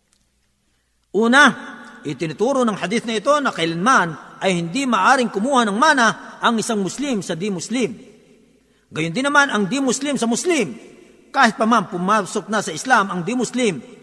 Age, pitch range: 50-69, 195-250 Hz